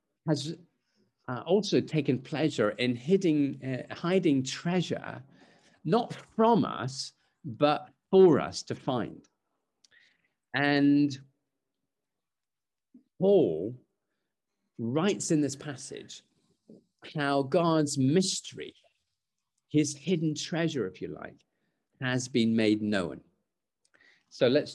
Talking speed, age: 95 wpm, 50-69